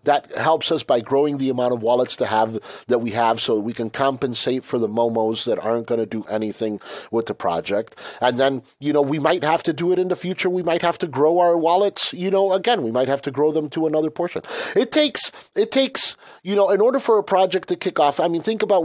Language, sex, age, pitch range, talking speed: English, male, 40-59, 125-175 Hz, 250 wpm